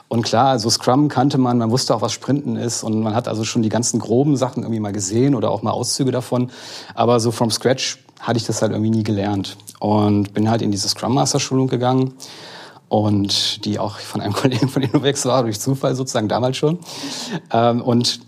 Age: 40-59